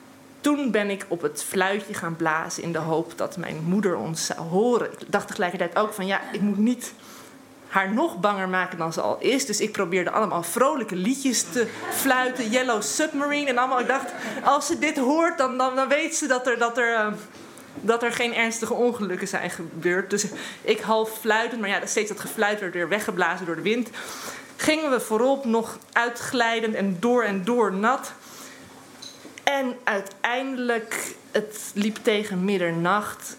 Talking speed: 175 wpm